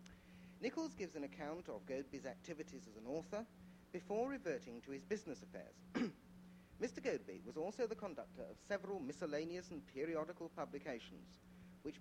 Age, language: 50-69, English